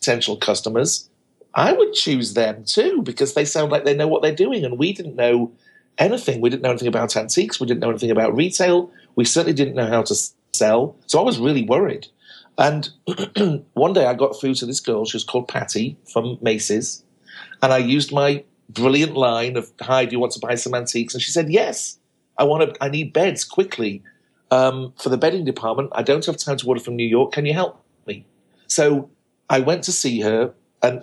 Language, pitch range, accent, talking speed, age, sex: English, 120-150 Hz, British, 215 wpm, 40-59, male